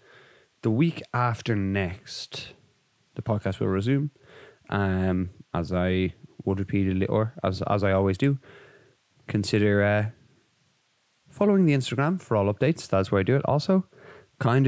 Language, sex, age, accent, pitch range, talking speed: English, male, 20-39, Irish, 100-130 Hz, 140 wpm